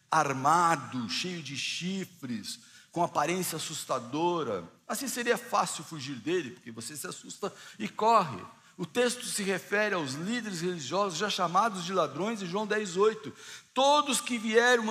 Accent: Brazilian